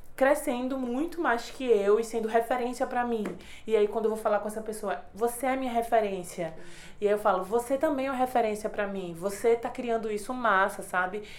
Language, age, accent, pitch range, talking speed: Portuguese, 20-39, Brazilian, 190-235 Hz, 215 wpm